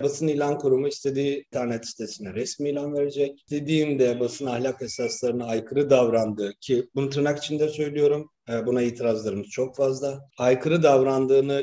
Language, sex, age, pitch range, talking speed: Turkish, male, 40-59, 120-145 Hz, 135 wpm